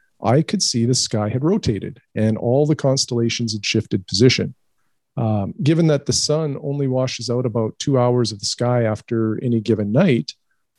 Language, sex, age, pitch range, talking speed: English, male, 40-59, 110-135 Hz, 180 wpm